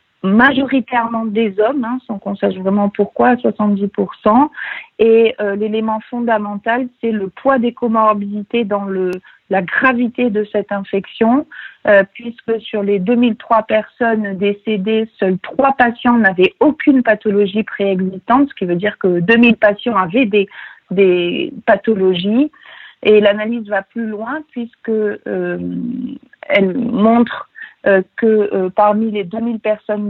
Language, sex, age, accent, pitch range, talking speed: French, female, 50-69, French, 195-230 Hz, 130 wpm